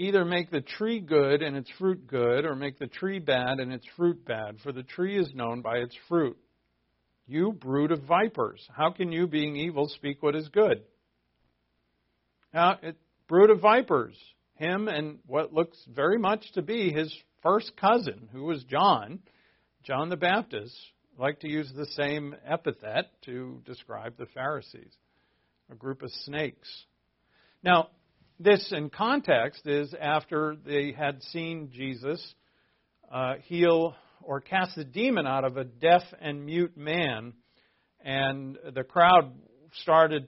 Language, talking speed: English, 150 wpm